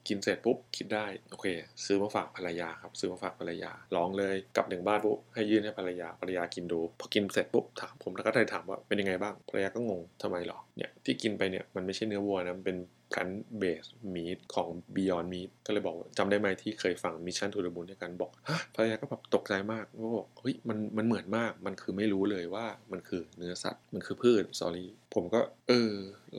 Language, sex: Thai, male